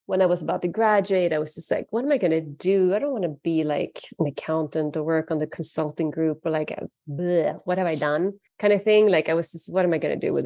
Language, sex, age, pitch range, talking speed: English, female, 30-49, 165-215 Hz, 300 wpm